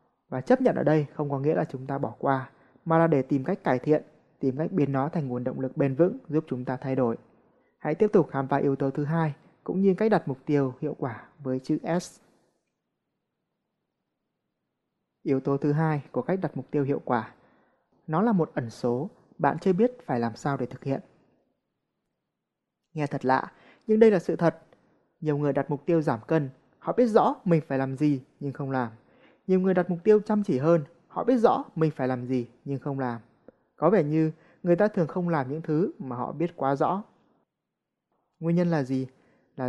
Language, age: Vietnamese, 20-39